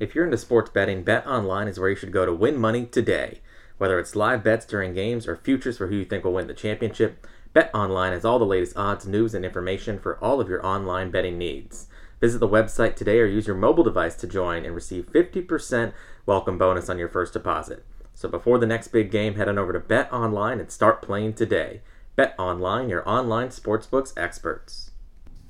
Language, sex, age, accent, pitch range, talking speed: English, male, 30-49, American, 95-115 Hz, 205 wpm